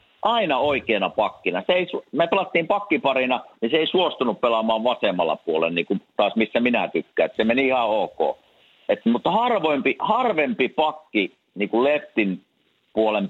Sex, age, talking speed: male, 50-69, 150 wpm